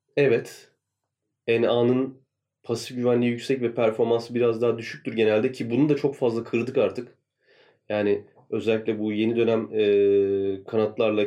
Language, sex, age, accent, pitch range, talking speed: Turkish, male, 30-49, native, 110-140 Hz, 135 wpm